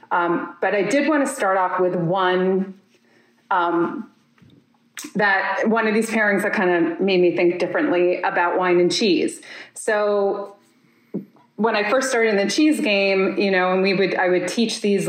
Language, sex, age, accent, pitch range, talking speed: English, female, 30-49, American, 185-235 Hz, 180 wpm